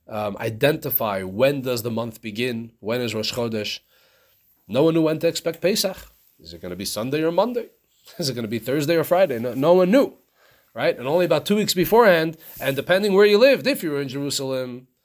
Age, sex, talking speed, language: 30-49, male, 220 wpm, English